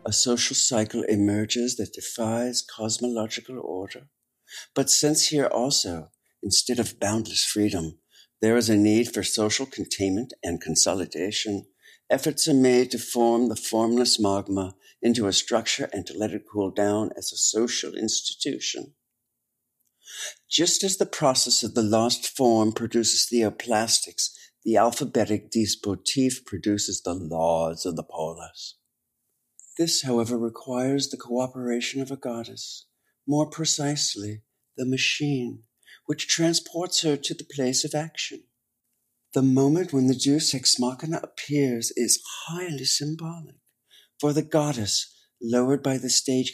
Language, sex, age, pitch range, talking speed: German, male, 60-79, 110-140 Hz, 135 wpm